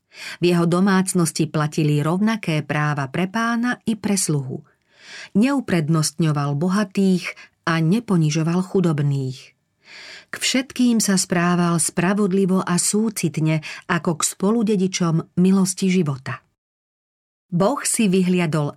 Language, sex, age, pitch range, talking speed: Slovak, female, 40-59, 155-195 Hz, 100 wpm